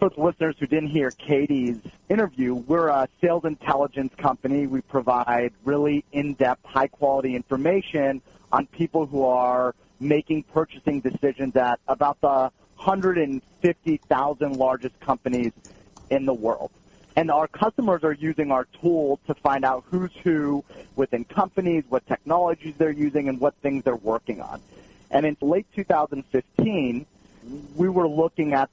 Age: 30-49